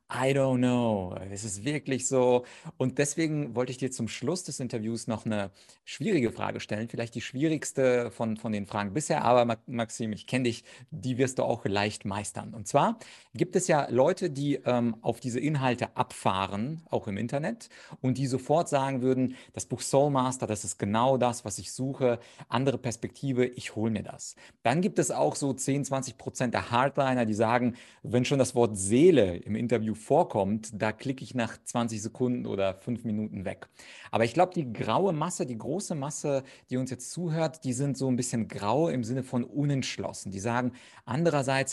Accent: German